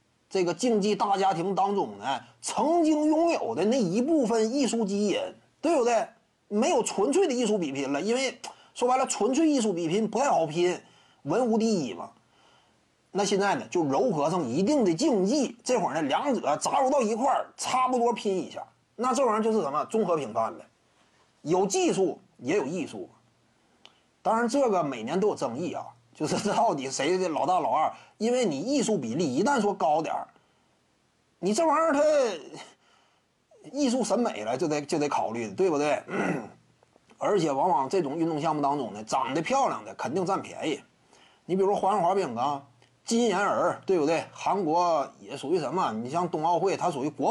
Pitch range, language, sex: 175-260 Hz, Chinese, male